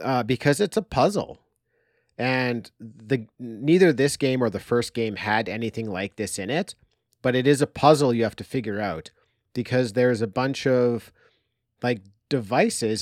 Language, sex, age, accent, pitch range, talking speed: English, male, 40-59, American, 110-135 Hz, 170 wpm